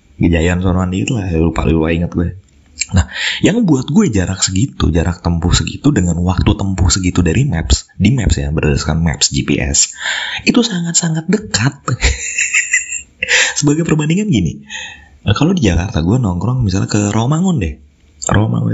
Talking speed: 140 wpm